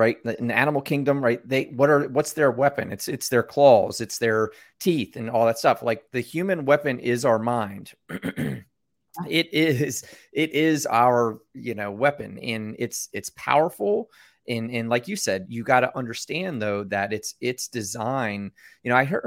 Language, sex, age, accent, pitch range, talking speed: English, male, 30-49, American, 110-135 Hz, 185 wpm